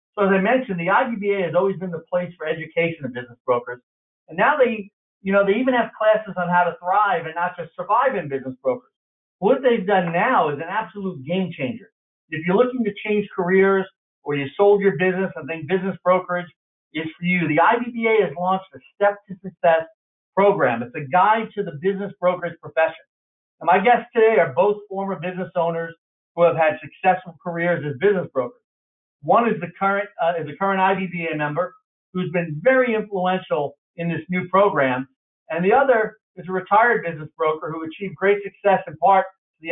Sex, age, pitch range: male, 50-69, 165-200 Hz